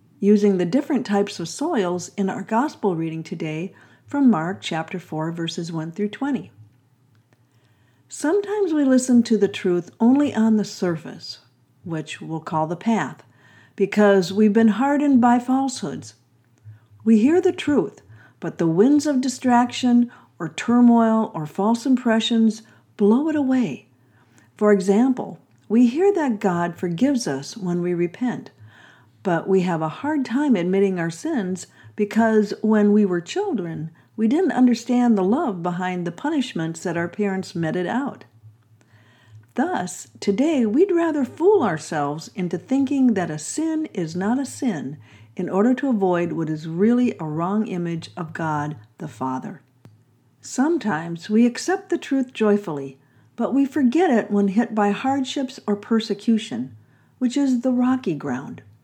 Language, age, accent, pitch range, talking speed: English, 50-69, American, 155-245 Hz, 150 wpm